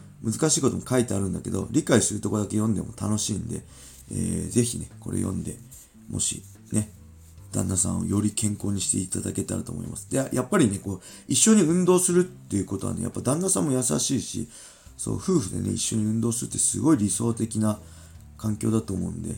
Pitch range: 95-120 Hz